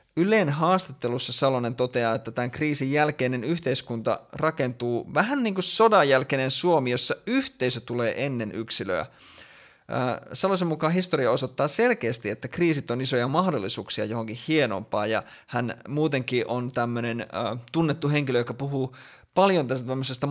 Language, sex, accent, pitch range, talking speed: Finnish, male, native, 115-145 Hz, 135 wpm